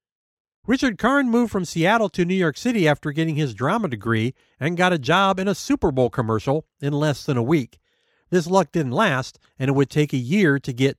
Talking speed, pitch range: 220 wpm, 125-195 Hz